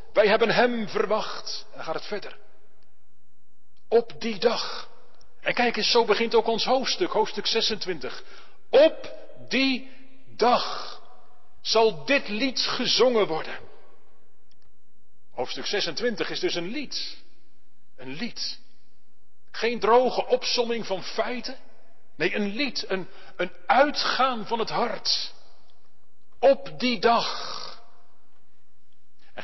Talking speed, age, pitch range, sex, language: 115 wpm, 40-59, 205-265 Hz, male, Dutch